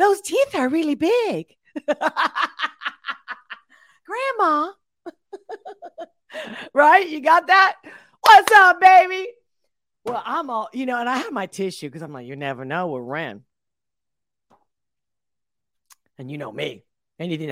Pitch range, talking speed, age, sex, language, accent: 210-290 Hz, 125 wpm, 40-59, female, English, American